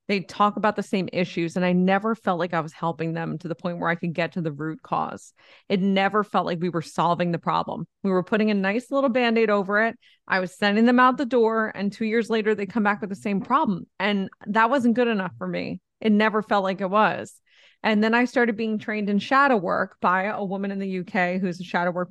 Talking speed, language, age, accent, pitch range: 255 wpm, English, 30-49, American, 185-230 Hz